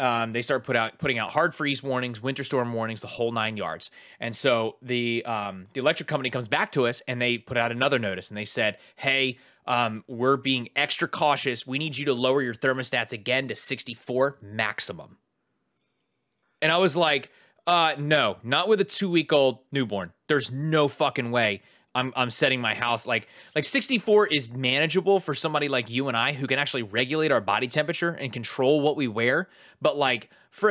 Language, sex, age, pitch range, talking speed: English, male, 30-49, 115-145 Hz, 195 wpm